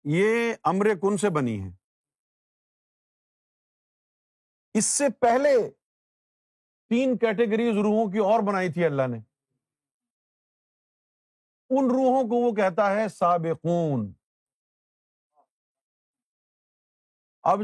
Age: 50-69